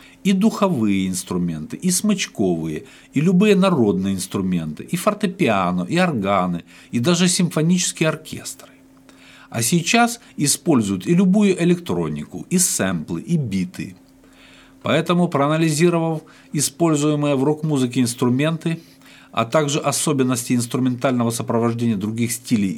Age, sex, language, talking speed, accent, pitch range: 50-69, male, Russian, 105 wpm, native, 110-155 Hz